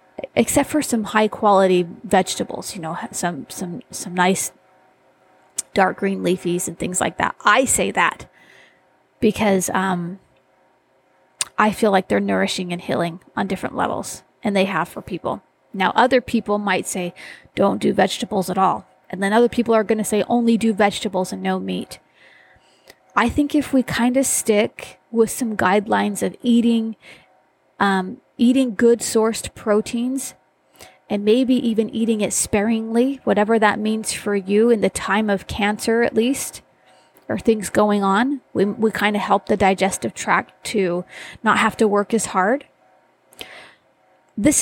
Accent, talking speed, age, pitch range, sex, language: American, 155 wpm, 30-49, 195-235 Hz, female, English